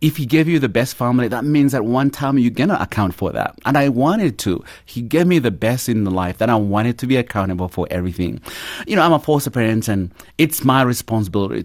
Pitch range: 95-130 Hz